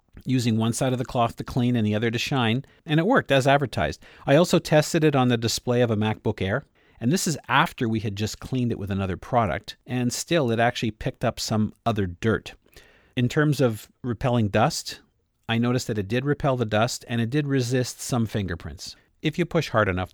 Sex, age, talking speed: male, 40-59, 220 wpm